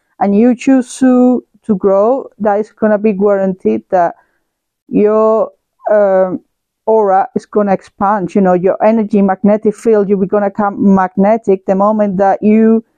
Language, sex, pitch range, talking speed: English, female, 195-230 Hz, 160 wpm